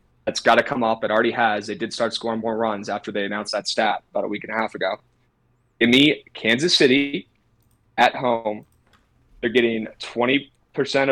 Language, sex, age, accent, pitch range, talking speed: English, male, 20-39, American, 110-125 Hz, 190 wpm